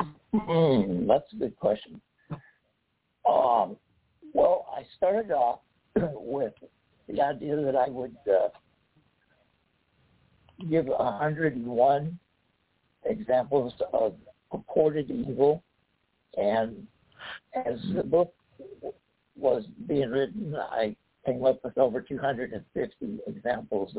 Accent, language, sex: American, English, male